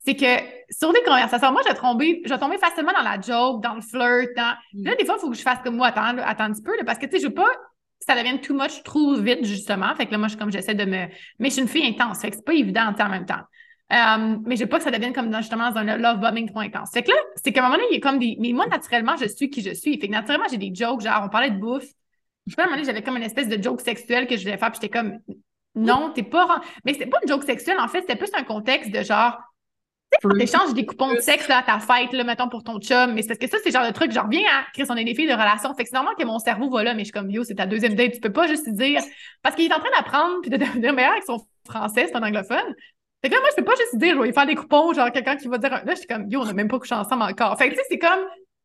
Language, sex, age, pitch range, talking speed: French, female, 20-39, 230-295 Hz, 325 wpm